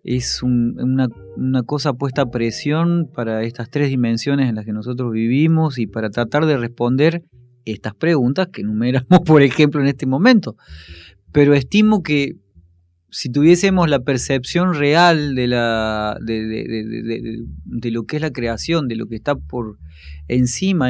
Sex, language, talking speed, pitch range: male, Spanish, 145 wpm, 120-160 Hz